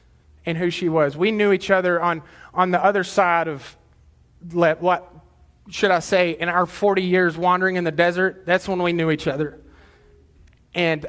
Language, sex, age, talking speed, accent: English, male, 30-49, 185 wpm, American